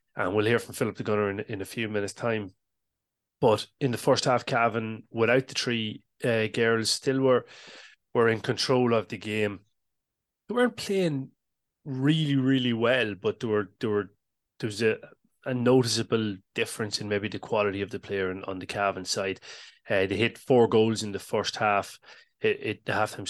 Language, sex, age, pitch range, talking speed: English, male, 30-49, 100-115 Hz, 190 wpm